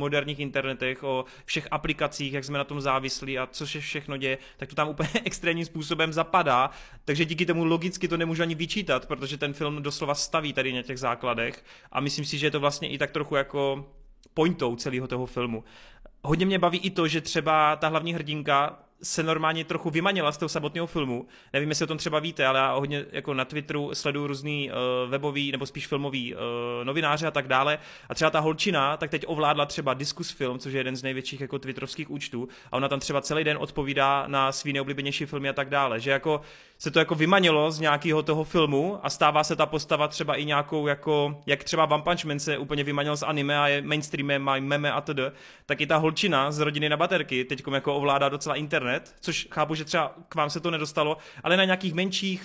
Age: 30-49